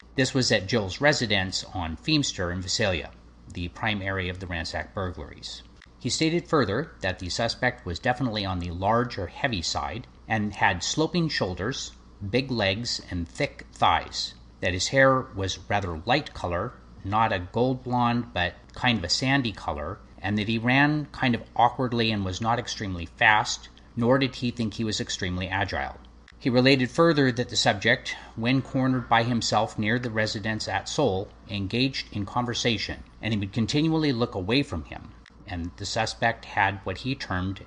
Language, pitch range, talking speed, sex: English, 95-125 Hz, 175 wpm, male